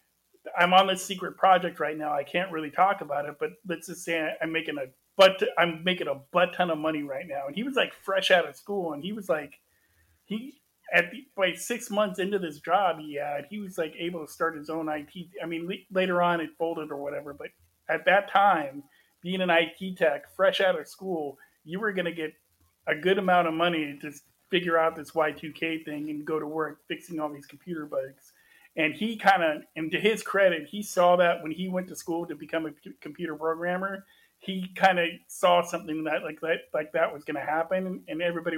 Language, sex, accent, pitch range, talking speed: English, male, American, 155-185 Hz, 220 wpm